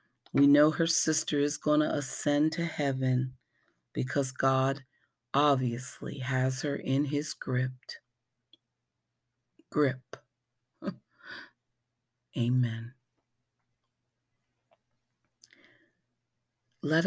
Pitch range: 135-180 Hz